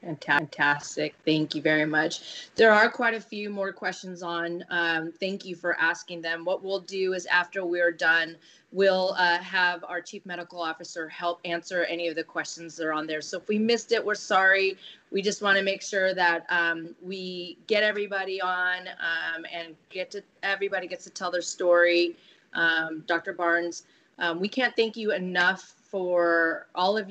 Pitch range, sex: 165-195 Hz, female